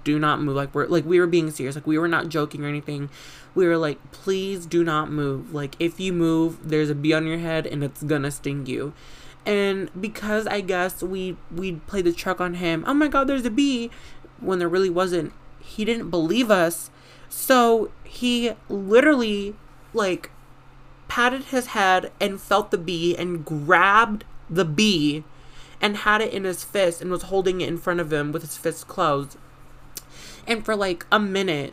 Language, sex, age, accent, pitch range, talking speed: English, male, 20-39, American, 165-200 Hz, 195 wpm